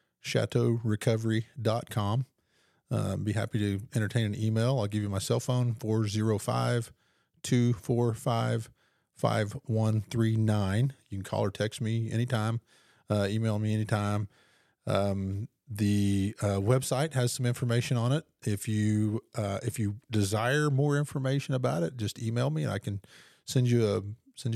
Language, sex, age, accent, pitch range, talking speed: English, male, 40-59, American, 105-120 Hz, 135 wpm